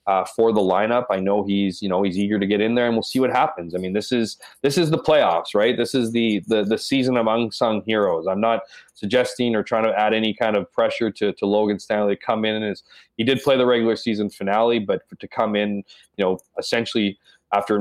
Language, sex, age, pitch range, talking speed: English, male, 20-39, 95-110 Hz, 245 wpm